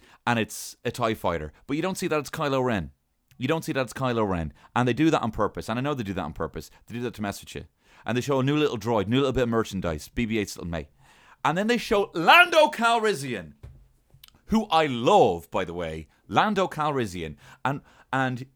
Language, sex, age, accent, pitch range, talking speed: English, male, 30-49, British, 110-170 Hz, 235 wpm